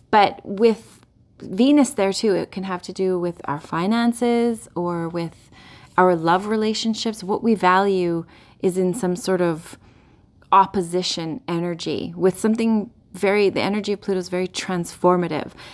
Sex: female